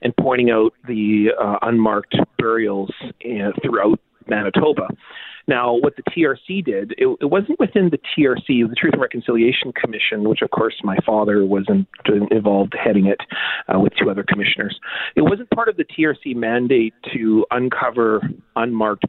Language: English